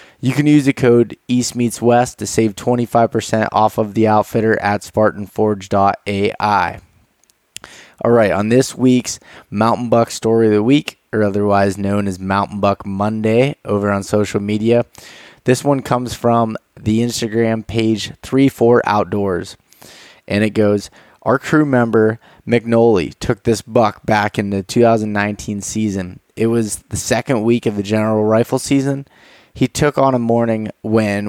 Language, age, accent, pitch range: English, 20-39, American, 100-115 Hz